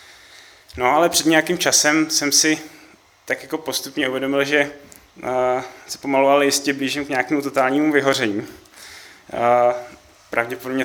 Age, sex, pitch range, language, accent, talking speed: 20-39, male, 125-140 Hz, Czech, native, 120 wpm